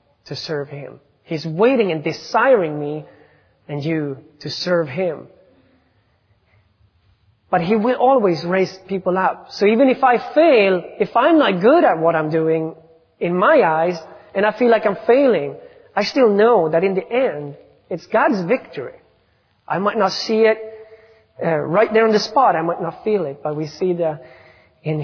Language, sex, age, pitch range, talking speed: English, male, 30-49, 160-215 Hz, 175 wpm